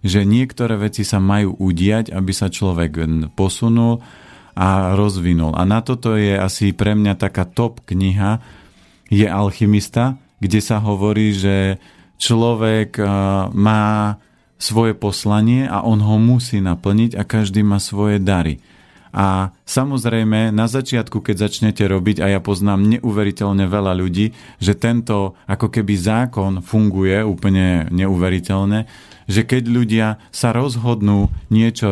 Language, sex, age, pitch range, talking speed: Slovak, male, 40-59, 100-115 Hz, 130 wpm